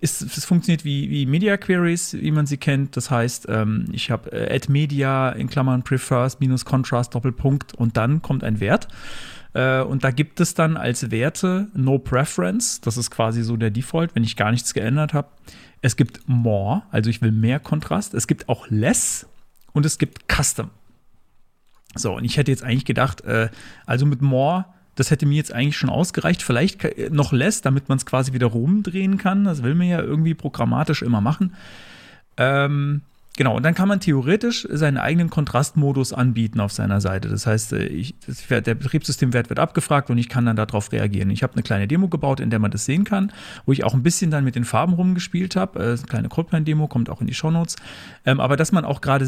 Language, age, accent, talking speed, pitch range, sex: German, 40-59, German, 200 wpm, 120-155 Hz, male